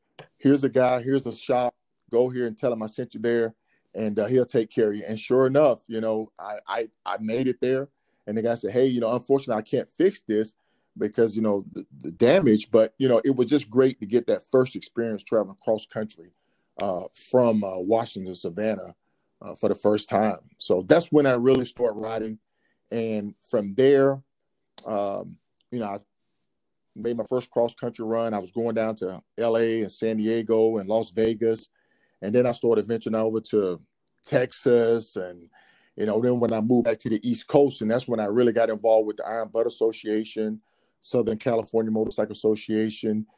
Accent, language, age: American, English, 40-59